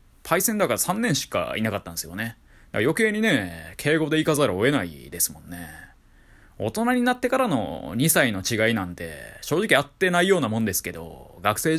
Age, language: 20-39, Japanese